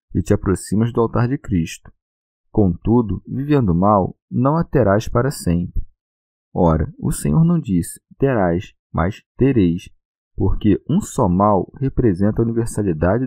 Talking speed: 135 wpm